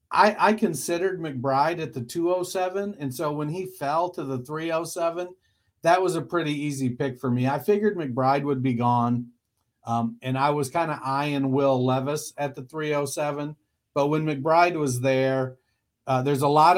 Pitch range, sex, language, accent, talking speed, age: 130-160 Hz, male, English, American, 180 wpm, 50-69